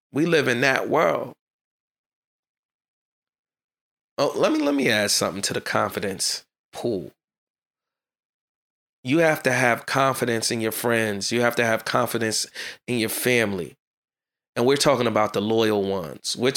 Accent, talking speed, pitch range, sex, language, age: American, 145 wpm, 110-135 Hz, male, English, 30-49